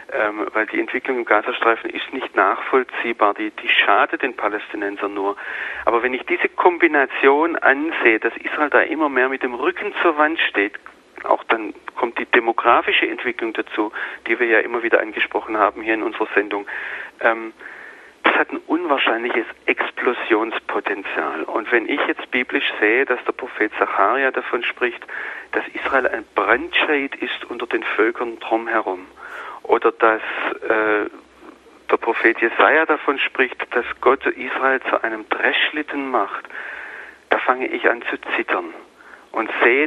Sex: male